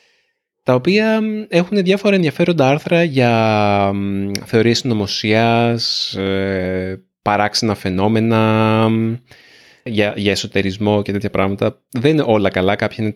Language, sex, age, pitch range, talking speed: Greek, male, 30-49, 105-135 Hz, 100 wpm